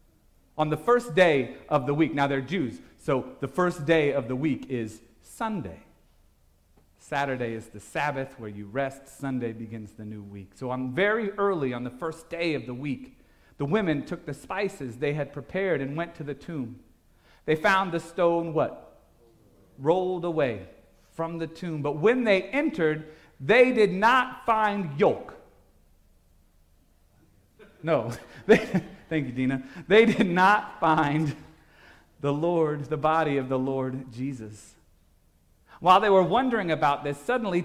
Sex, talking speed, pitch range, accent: male, 155 wpm, 120-185 Hz, American